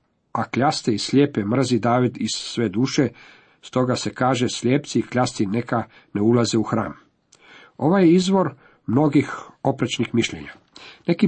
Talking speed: 145 wpm